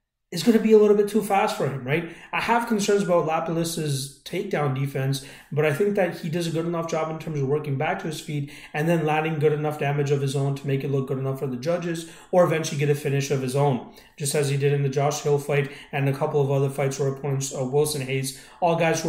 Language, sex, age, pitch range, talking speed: English, male, 30-49, 140-170 Hz, 275 wpm